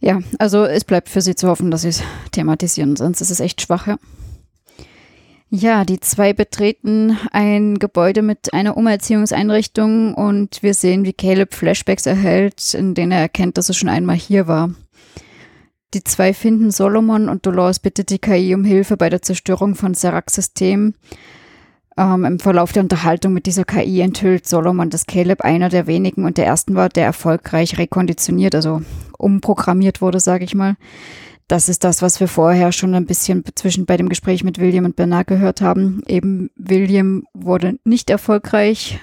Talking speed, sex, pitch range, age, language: 170 wpm, female, 175-200 Hz, 20-39, German